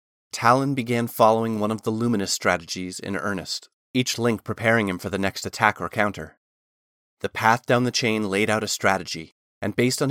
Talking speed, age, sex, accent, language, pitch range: 190 wpm, 30-49, male, American, English, 100-125 Hz